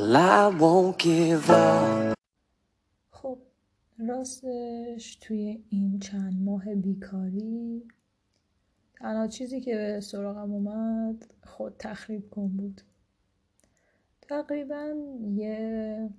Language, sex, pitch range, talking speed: Persian, female, 190-220 Hz, 70 wpm